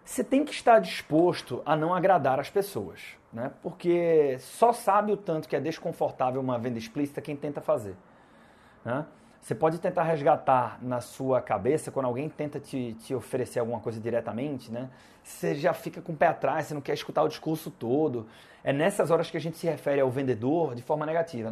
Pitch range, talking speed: 135-190 Hz, 195 wpm